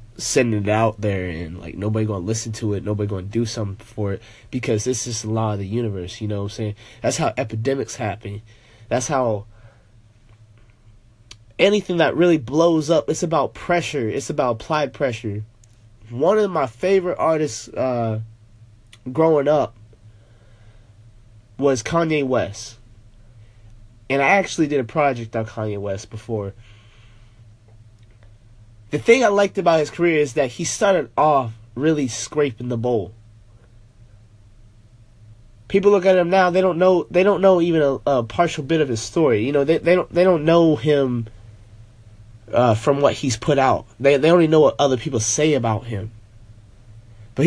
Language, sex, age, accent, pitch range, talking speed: English, male, 20-39, American, 110-150 Hz, 165 wpm